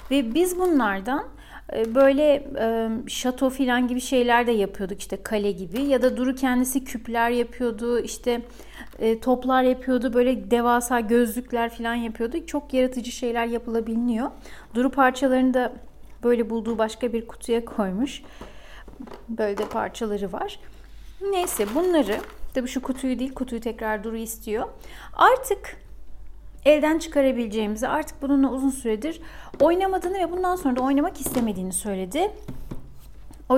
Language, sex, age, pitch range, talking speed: Turkish, female, 40-59, 230-290 Hz, 125 wpm